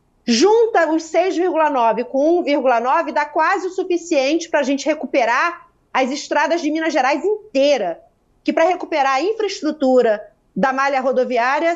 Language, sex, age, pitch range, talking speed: Portuguese, female, 40-59, 265-325 Hz, 140 wpm